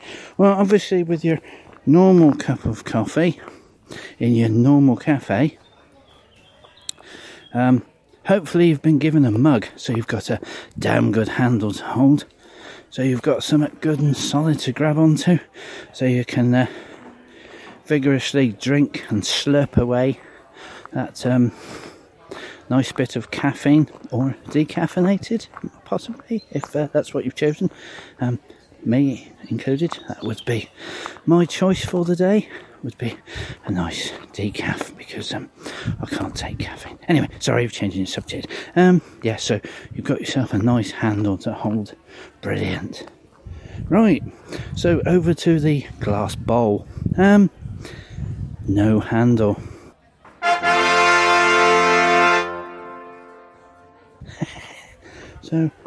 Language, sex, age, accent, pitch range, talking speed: English, male, 40-59, British, 110-160 Hz, 120 wpm